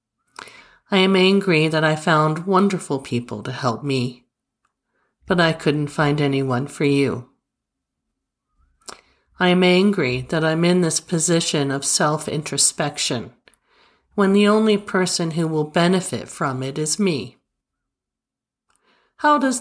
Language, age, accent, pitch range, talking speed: English, 50-69, American, 135-195 Hz, 125 wpm